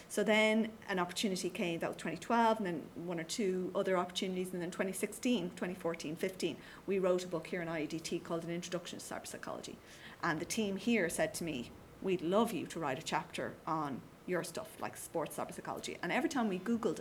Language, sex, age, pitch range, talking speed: English, female, 30-49, 175-210 Hz, 210 wpm